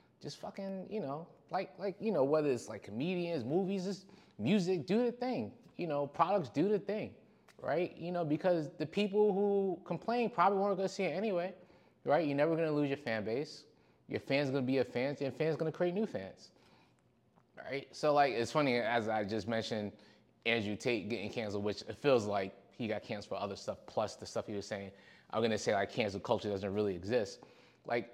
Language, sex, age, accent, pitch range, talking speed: English, male, 20-39, American, 110-180 Hz, 210 wpm